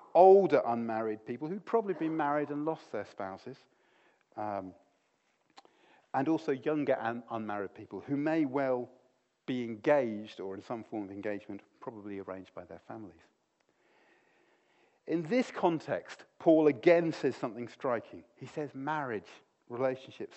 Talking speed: 140 wpm